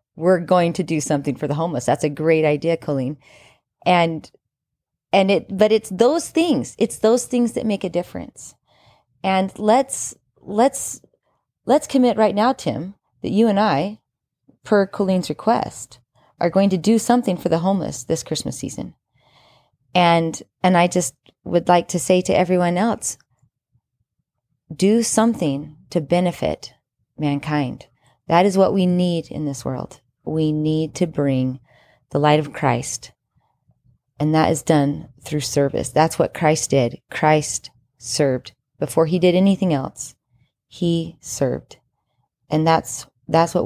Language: English